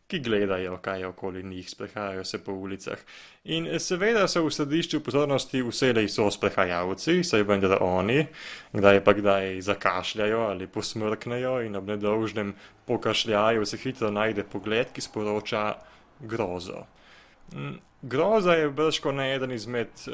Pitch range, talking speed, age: 100-135 Hz, 130 wpm, 20-39